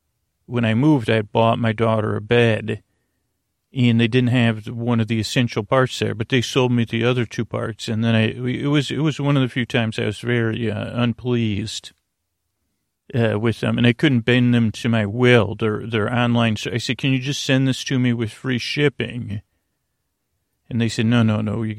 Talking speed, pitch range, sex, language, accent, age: 215 wpm, 110-125 Hz, male, English, American, 40-59